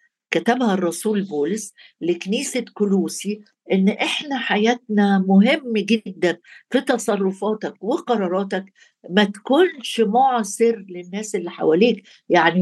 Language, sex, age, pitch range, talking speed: Arabic, female, 60-79, 190-240 Hz, 95 wpm